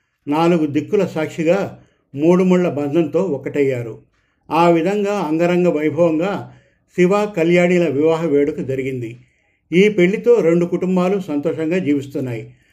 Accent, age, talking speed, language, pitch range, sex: native, 50-69, 105 wpm, Telugu, 145-175 Hz, male